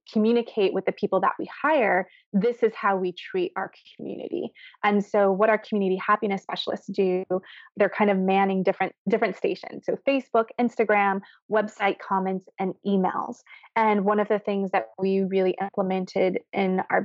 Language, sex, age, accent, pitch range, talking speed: English, female, 20-39, American, 195-235 Hz, 165 wpm